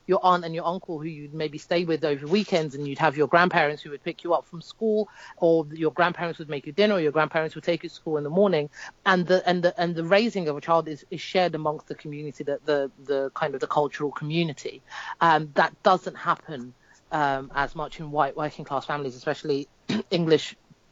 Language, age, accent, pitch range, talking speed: English, 30-49, British, 140-170 Hz, 230 wpm